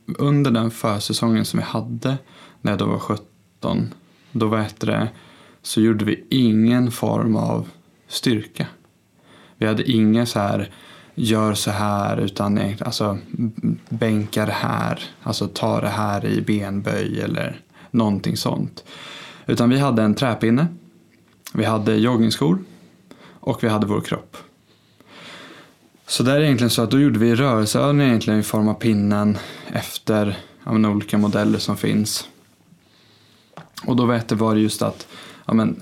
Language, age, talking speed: Swedish, 20-39, 135 wpm